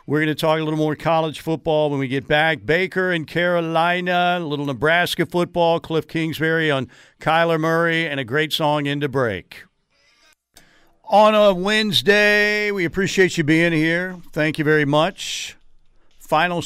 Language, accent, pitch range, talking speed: English, American, 135-160 Hz, 160 wpm